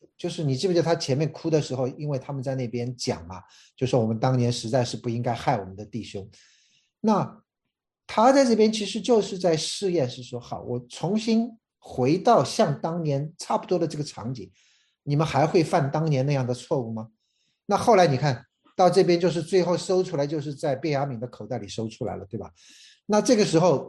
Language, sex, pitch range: Chinese, male, 120-170 Hz